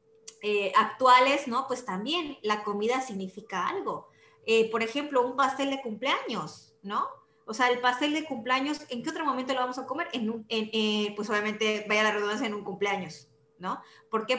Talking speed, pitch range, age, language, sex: 195 wpm, 210-265 Hz, 20-39, Spanish, female